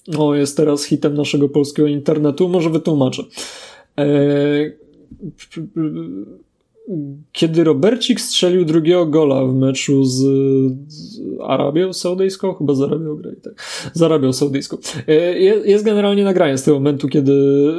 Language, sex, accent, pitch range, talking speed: Polish, male, native, 145-175 Hz, 130 wpm